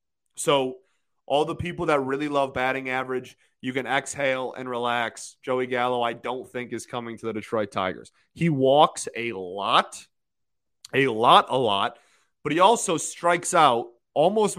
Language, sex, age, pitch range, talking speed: English, male, 30-49, 115-150 Hz, 160 wpm